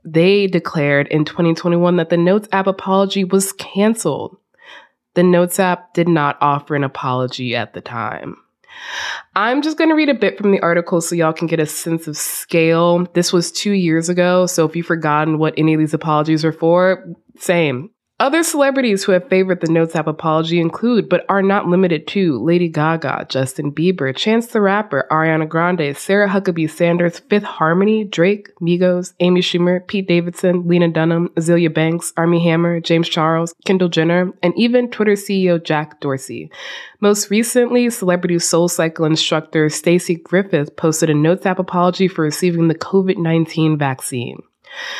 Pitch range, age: 155-195 Hz, 20-39